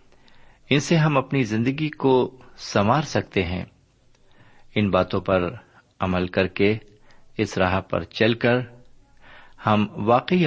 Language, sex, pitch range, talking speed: Urdu, male, 95-125 Hz, 125 wpm